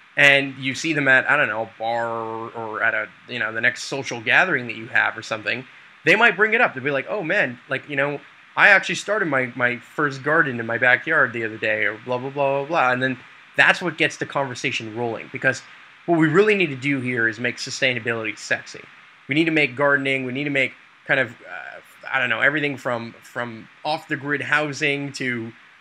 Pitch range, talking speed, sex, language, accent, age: 125-155 Hz, 230 wpm, male, English, American, 20-39